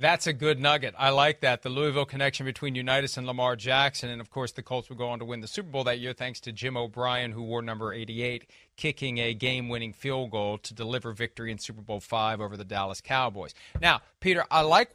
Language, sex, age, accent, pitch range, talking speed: English, male, 40-59, American, 125-165 Hz, 235 wpm